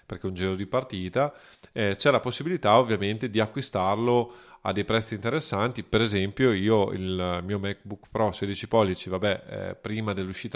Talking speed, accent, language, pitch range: 165 wpm, native, Italian, 100-130 Hz